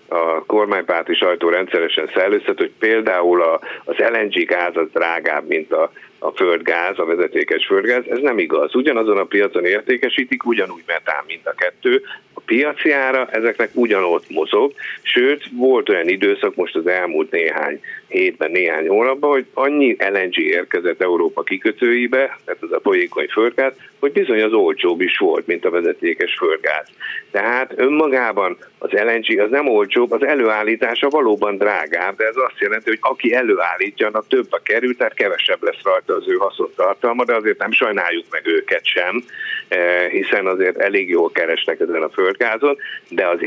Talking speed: 160 wpm